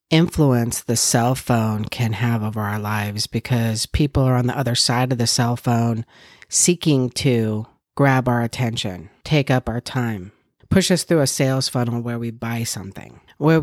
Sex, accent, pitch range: female, American, 115-140 Hz